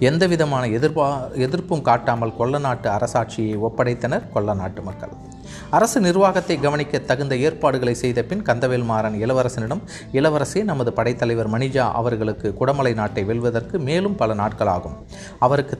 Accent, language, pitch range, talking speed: native, Tamil, 115-145 Hz, 125 wpm